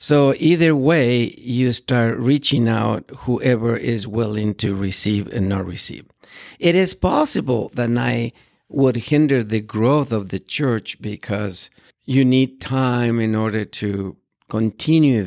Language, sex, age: English, male, 50-69